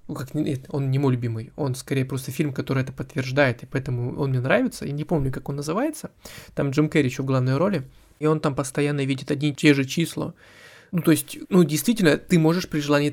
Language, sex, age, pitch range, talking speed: Russian, male, 20-39, 135-155 Hz, 220 wpm